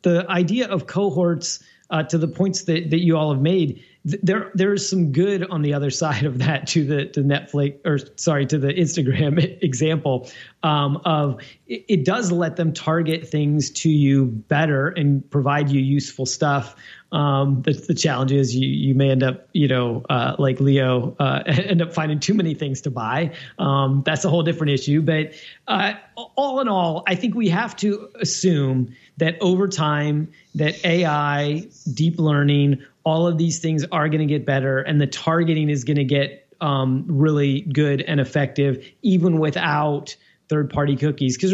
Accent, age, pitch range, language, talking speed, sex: American, 30-49, 140-170 Hz, English, 185 wpm, male